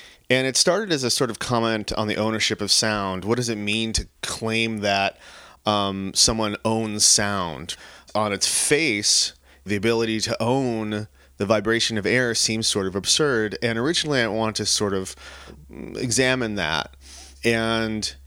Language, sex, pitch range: English, male, 80-115 Hz